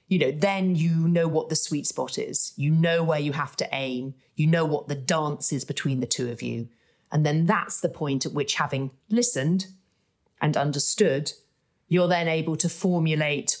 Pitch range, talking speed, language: 145-175 Hz, 195 wpm, English